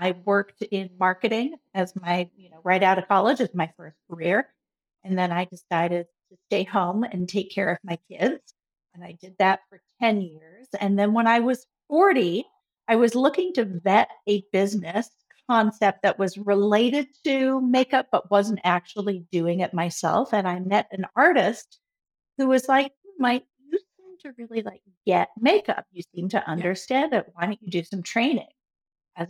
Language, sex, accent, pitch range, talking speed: English, female, American, 180-230 Hz, 180 wpm